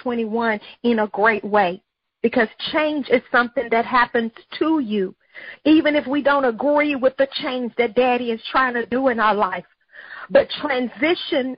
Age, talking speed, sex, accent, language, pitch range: 50-69, 165 wpm, female, American, English, 240-285 Hz